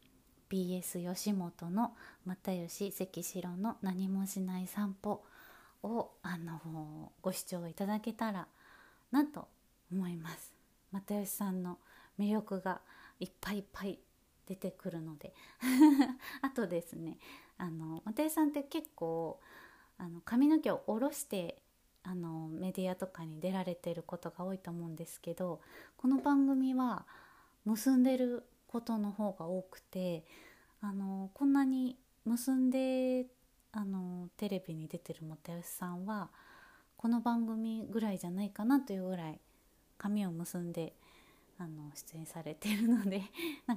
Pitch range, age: 175-235 Hz, 30-49